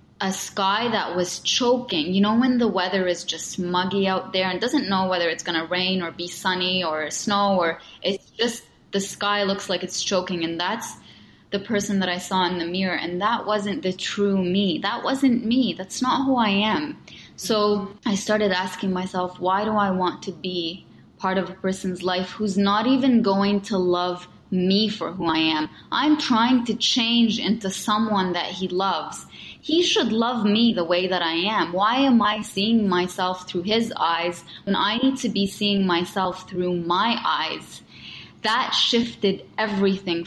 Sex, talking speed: female, 190 wpm